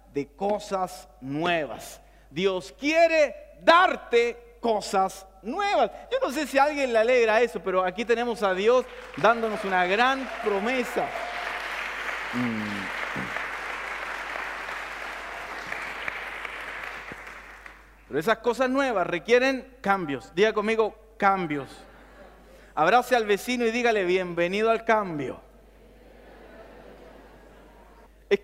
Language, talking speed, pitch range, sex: Spanish, 90 wpm, 200-255 Hz, male